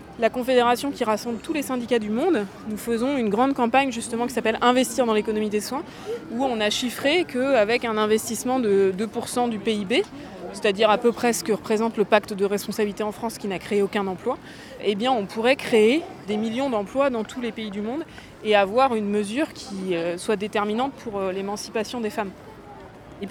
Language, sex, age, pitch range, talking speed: French, female, 20-39, 210-255 Hz, 200 wpm